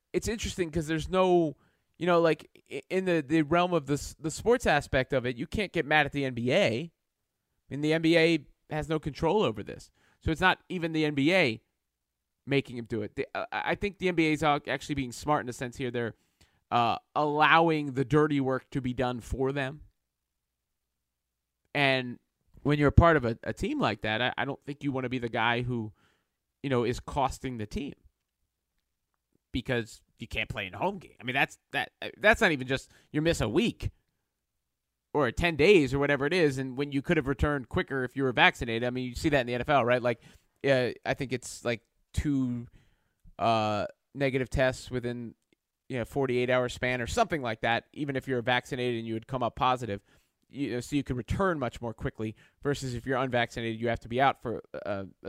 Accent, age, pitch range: American, 30-49, 115-150 Hz